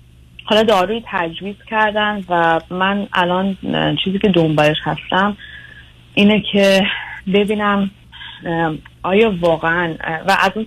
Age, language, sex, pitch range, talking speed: 30-49, Persian, female, 145-185 Hz, 105 wpm